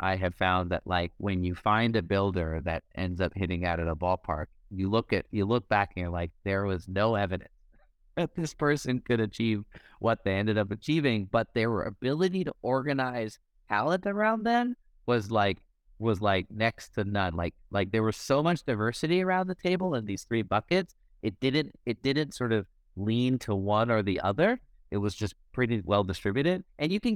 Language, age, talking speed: English, 30-49, 200 wpm